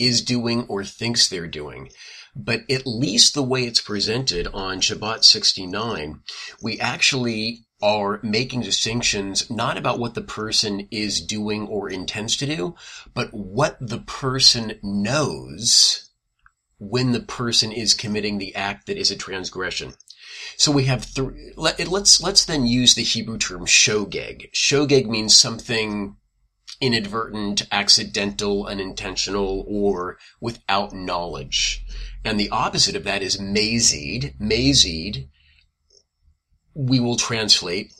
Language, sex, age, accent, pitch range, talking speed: English, male, 40-59, American, 100-120 Hz, 125 wpm